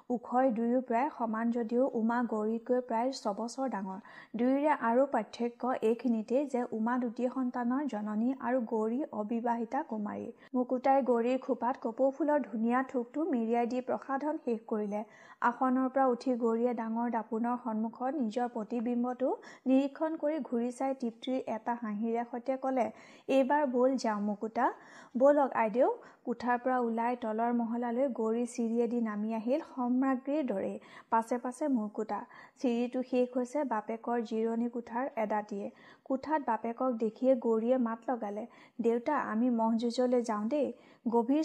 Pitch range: 230-260 Hz